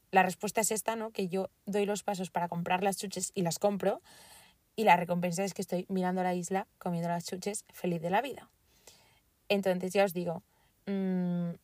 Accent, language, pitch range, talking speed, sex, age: Spanish, Spanish, 180-220 Hz, 195 wpm, female, 20-39